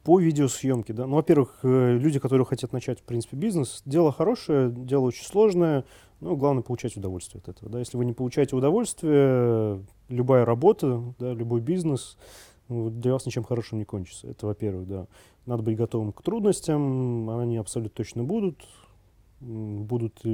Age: 30-49